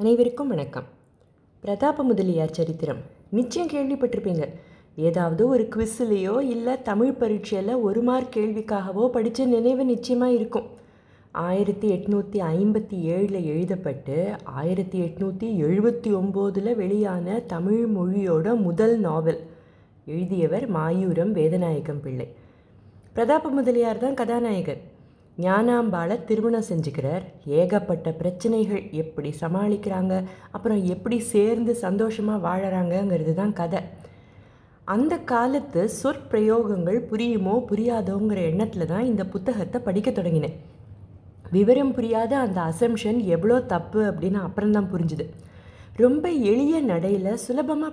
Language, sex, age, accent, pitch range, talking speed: Tamil, female, 20-39, native, 170-235 Hz, 95 wpm